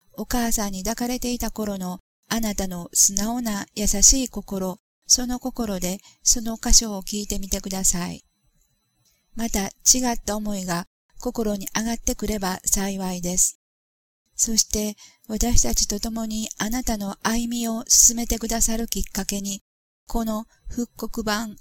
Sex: female